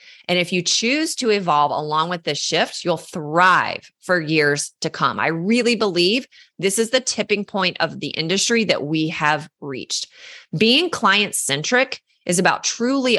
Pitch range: 155-210 Hz